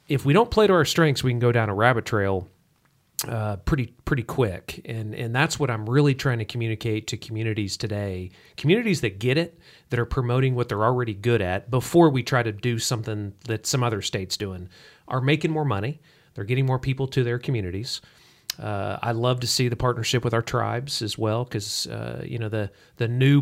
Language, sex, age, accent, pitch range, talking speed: English, male, 40-59, American, 105-140 Hz, 215 wpm